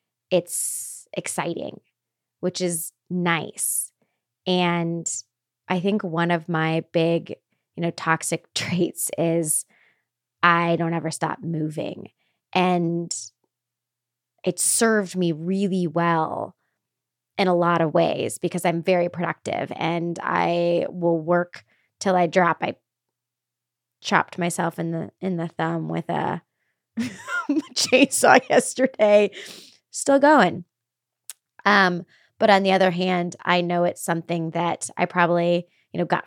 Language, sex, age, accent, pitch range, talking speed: English, female, 20-39, American, 170-190 Hz, 125 wpm